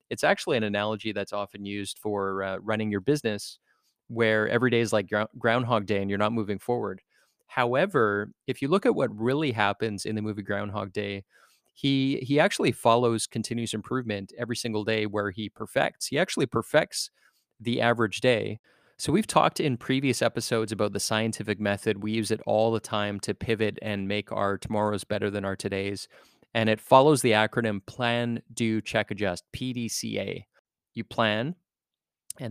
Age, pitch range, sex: 20-39, 105-120 Hz, male